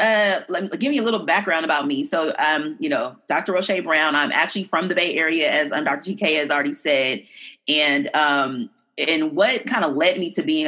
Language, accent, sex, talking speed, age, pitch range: English, American, female, 235 wpm, 30-49, 155-230 Hz